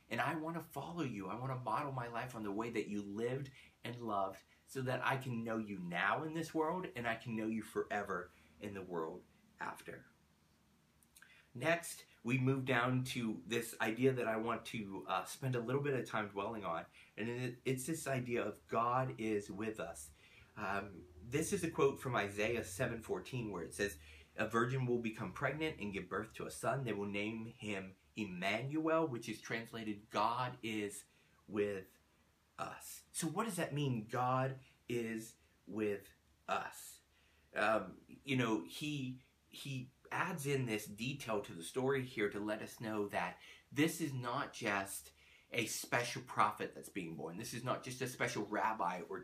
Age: 30-49